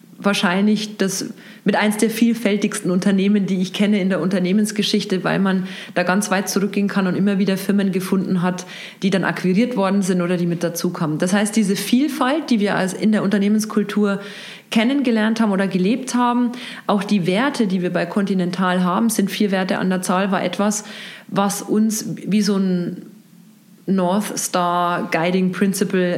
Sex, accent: female, German